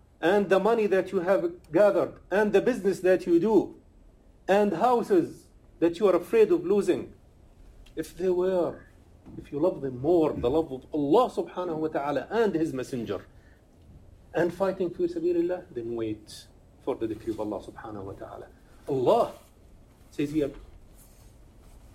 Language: English